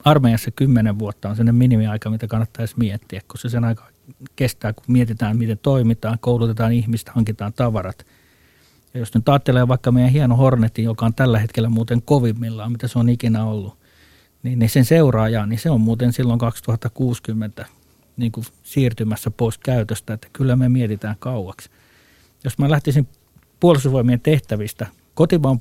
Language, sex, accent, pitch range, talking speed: Finnish, male, native, 115-130 Hz, 155 wpm